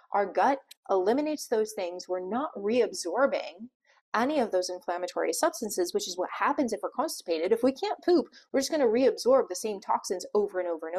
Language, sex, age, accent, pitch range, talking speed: English, female, 30-49, American, 185-265 Hz, 190 wpm